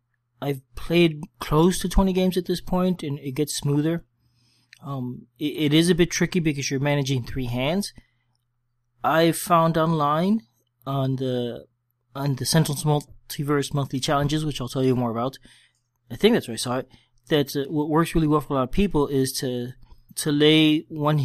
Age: 20-39